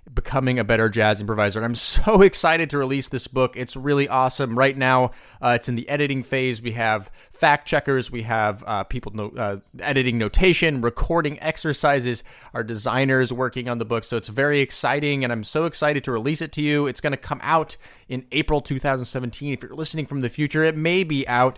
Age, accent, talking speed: 30-49, American, 210 wpm